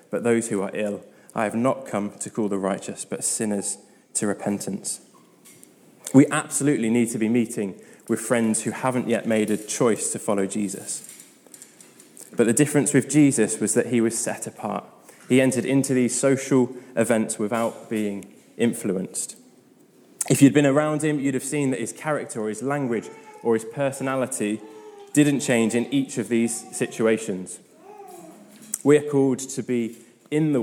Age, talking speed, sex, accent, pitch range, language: 20-39, 165 wpm, male, British, 110-130 Hz, English